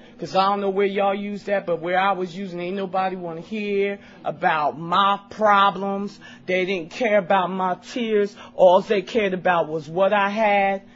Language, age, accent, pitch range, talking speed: English, 40-59, American, 170-205 Hz, 190 wpm